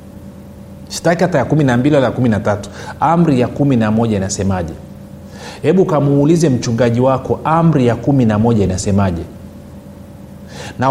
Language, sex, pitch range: Swahili, male, 105-145 Hz